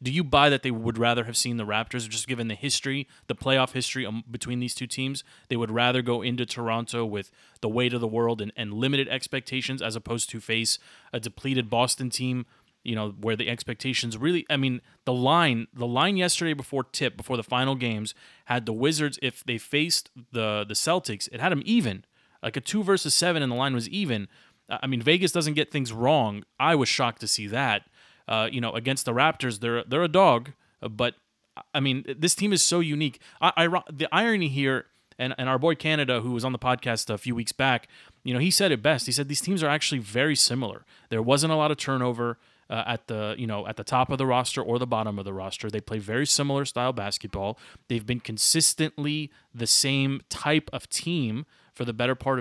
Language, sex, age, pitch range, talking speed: English, male, 30-49, 115-145 Hz, 220 wpm